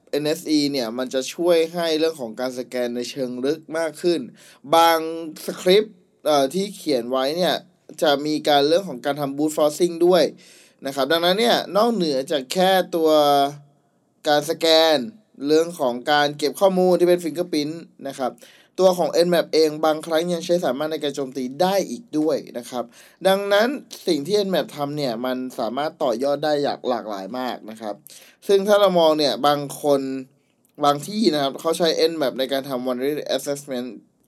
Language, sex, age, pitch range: Thai, male, 20-39, 135-175 Hz